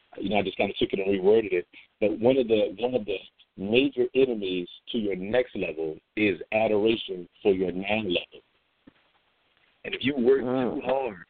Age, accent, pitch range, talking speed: 50-69, American, 105-140 Hz, 190 wpm